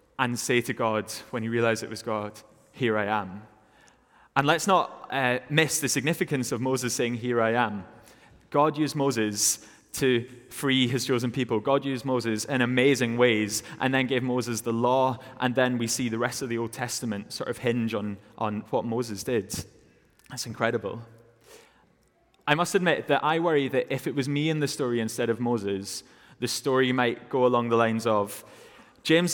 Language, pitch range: English, 115-135 Hz